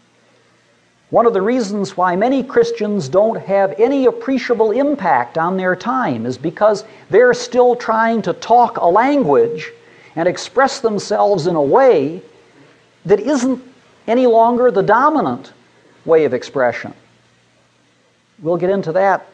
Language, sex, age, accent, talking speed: English, male, 50-69, American, 135 wpm